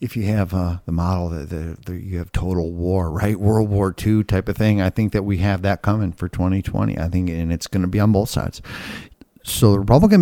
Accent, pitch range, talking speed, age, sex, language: American, 85-105 Hz, 245 wpm, 50-69, male, English